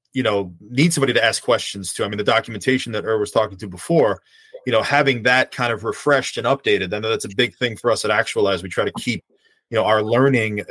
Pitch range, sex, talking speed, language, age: 105-150 Hz, male, 250 wpm, English, 30-49